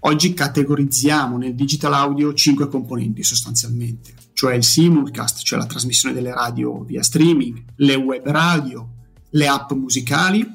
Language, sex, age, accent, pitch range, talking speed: Italian, male, 30-49, native, 125-160 Hz, 135 wpm